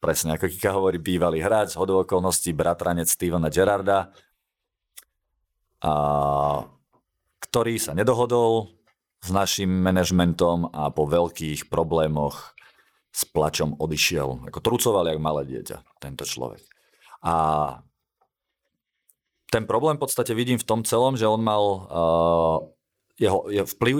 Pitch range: 80-95 Hz